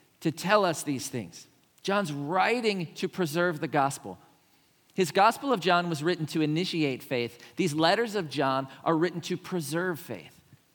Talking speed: 160 wpm